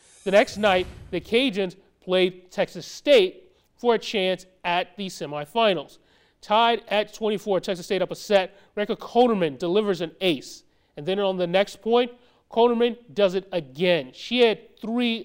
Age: 30-49